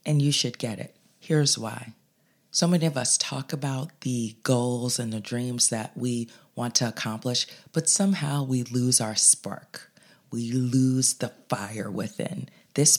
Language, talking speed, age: English, 160 wpm, 30-49